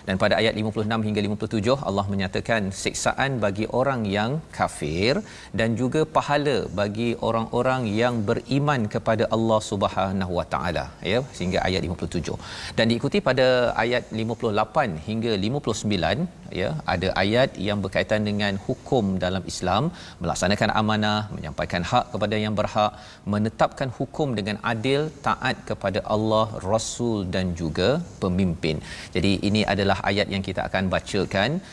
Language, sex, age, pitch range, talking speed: Malayalam, male, 40-59, 95-115 Hz, 135 wpm